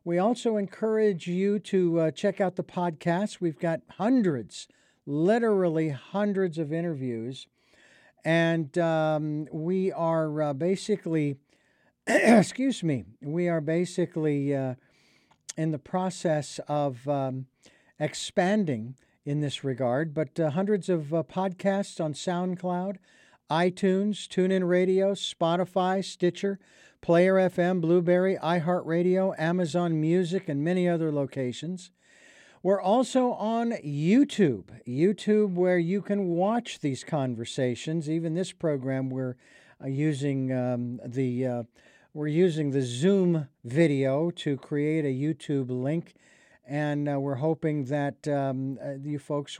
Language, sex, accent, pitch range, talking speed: English, male, American, 145-190 Hz, 120 wpm